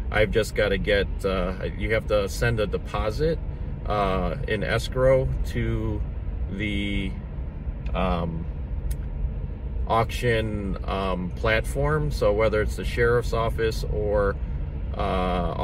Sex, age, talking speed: male, 30-49, 110 wpm